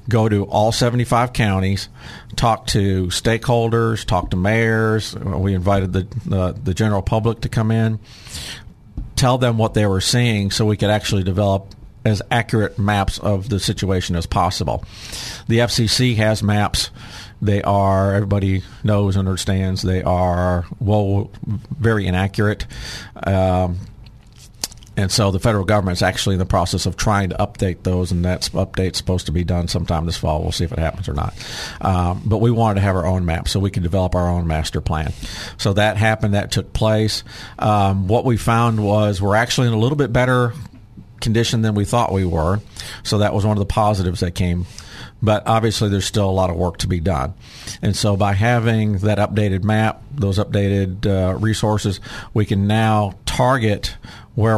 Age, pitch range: 50-69, 95-110 Hz